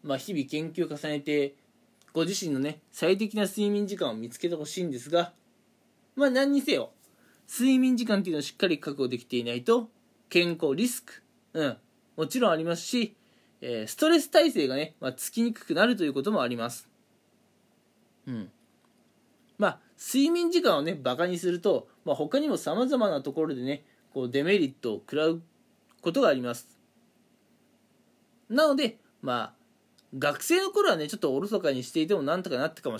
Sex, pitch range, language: male, 145-215 Hz, Japanese